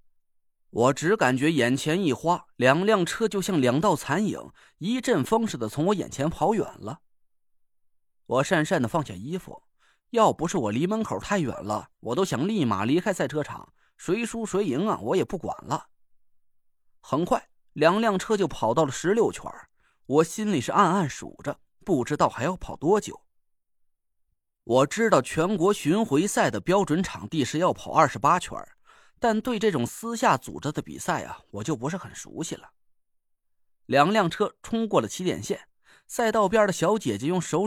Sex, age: male, 30-49